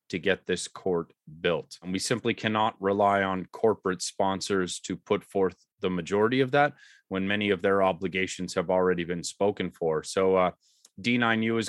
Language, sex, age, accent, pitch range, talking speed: English, male, 30-49, American, 95-110 Hz, 175 wpm